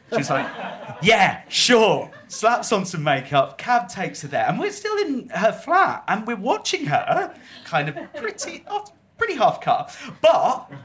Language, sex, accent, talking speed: English, male, British, 160 wpm